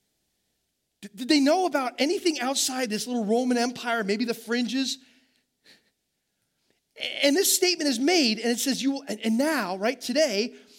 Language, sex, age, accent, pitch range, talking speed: English, male, 30-49, American, 185-260 Hz, 150 wpm